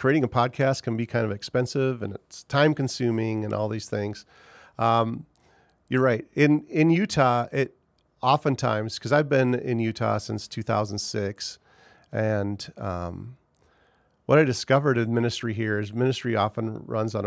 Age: 40-59